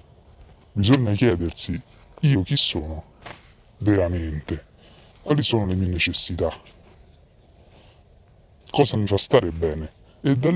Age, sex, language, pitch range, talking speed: 30-49, female, Italian, 85-115 Hz, 100 wpm